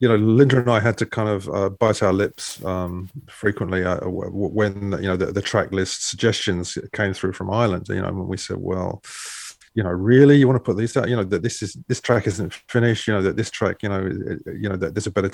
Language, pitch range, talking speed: English, 95-120 Hz, 260 wpm